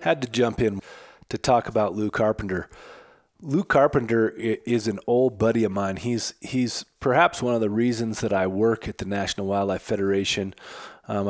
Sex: male